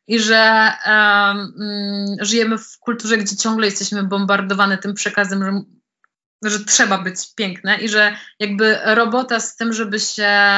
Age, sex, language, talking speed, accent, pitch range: 20-39, female, Polish, 135 wpm, native, 200-240 Hz